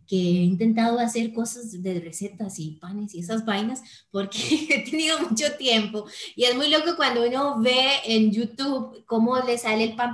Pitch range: 205-280 Hz